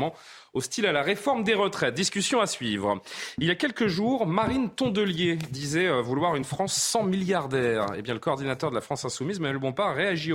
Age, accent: 30-49, French